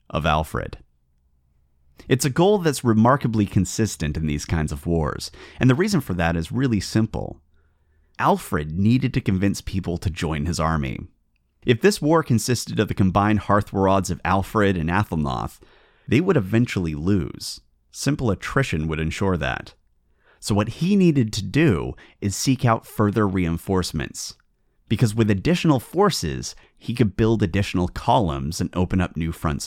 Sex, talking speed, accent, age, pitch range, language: male, 155 wpm, American, 30-49, 75-110 Hz, English